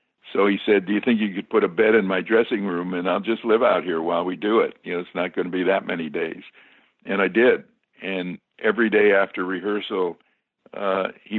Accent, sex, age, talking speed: American, male, 60-79, 235 wpm